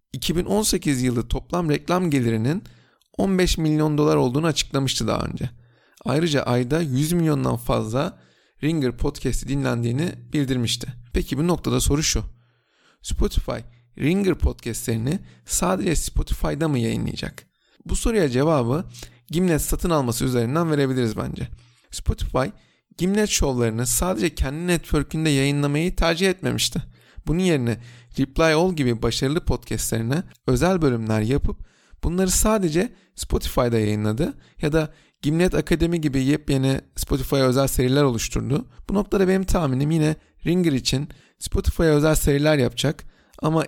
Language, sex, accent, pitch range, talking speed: Turkish, male, native, 120-165 Hz, 120 wpm